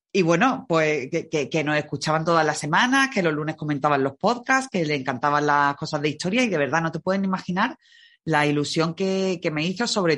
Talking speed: 225 wpm